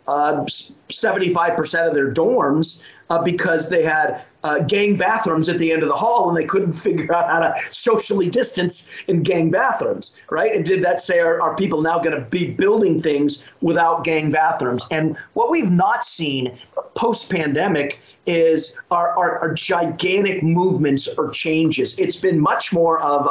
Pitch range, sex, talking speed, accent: 155-190 Hz, male, 170 wpm, American